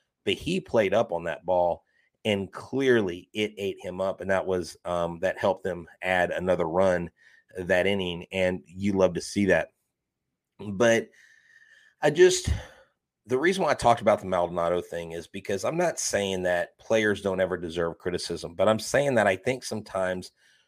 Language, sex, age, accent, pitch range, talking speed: English, male, 30-49, American, 90-115 Hz, 175 wpm